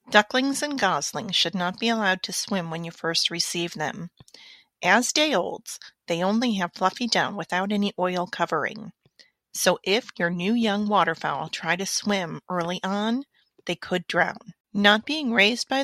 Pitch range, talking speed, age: 185-235 Hz, 165 wpm, 40-59